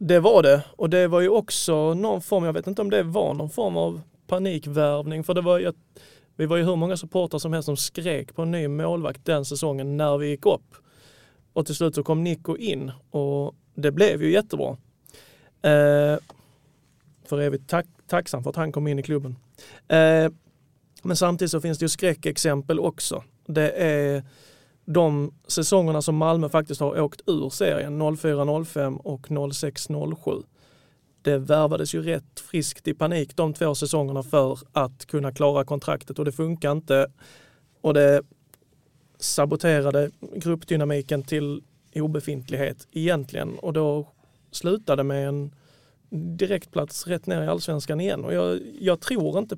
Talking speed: 160 wpm